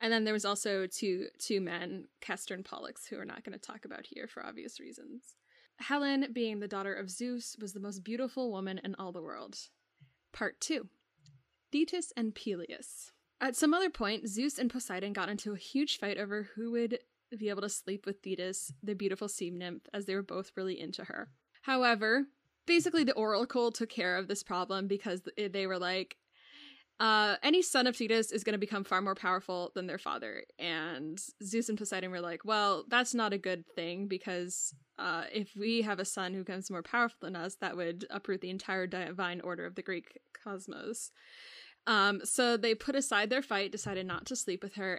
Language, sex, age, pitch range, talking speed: English, female, 10-29, 190-235 Hz, 200 wpm